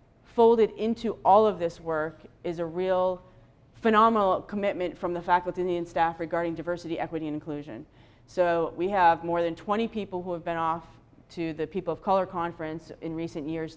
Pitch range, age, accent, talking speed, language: 155-180 Hz, 40-59, American, 180 wpm, English